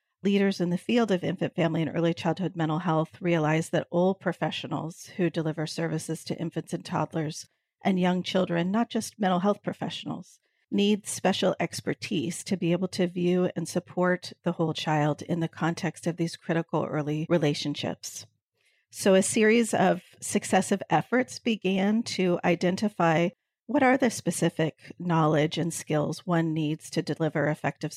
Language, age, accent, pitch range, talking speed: English, 40-59, American, 160-190 Hz, 155 wpm